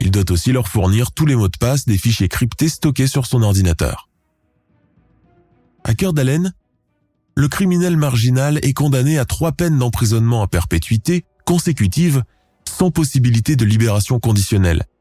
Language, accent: French, French